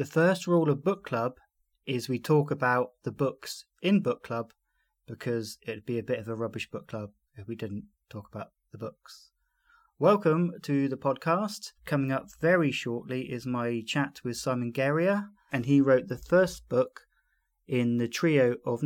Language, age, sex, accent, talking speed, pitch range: English, 30-49, male, British, 180 wpm, 115-145 Hz